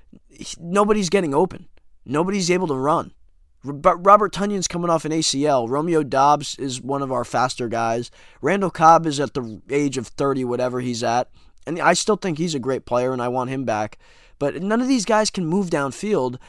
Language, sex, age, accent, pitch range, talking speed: English, male, 20-39, American, 125-170 Hz, 195 wpm